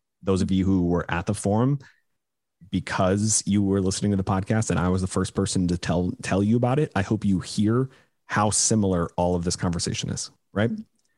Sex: male